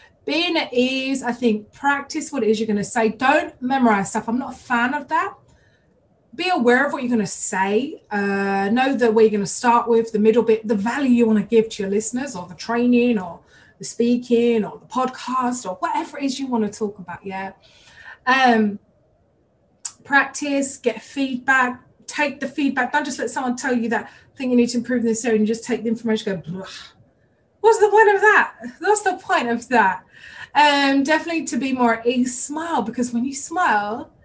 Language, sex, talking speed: English, female, 215 wpm